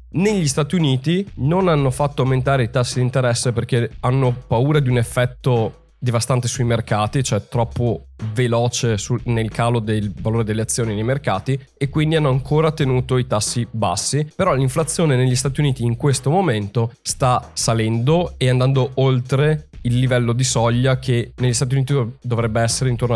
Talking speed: 165 wpm